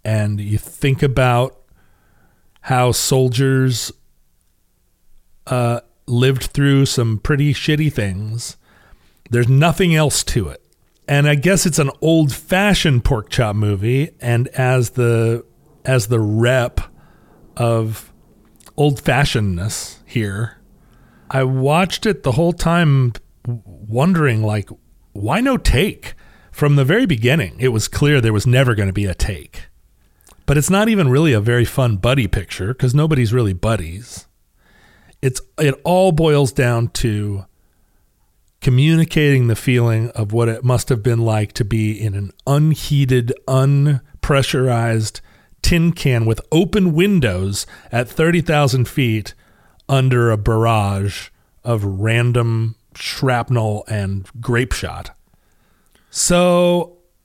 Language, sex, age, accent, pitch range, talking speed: English, male, 40-59, American, 105-145 Hz, 125 wpm